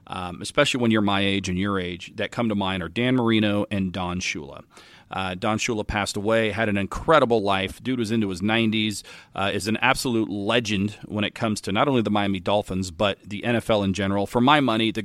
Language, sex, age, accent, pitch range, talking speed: English, male, 40-59, American, 100-115 Hz, 220 wpm